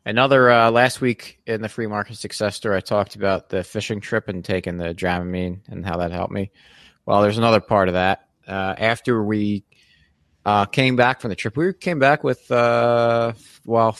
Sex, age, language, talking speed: male, 30-49, English, 195 wpm